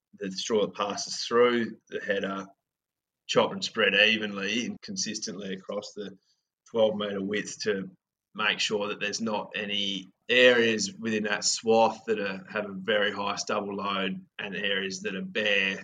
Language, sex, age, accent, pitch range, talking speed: English, male, 20-39, Australian, 95-110 Hz, 155 wpm